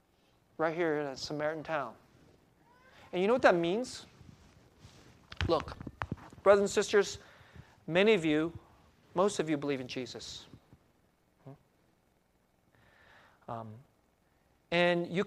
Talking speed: 115 wpm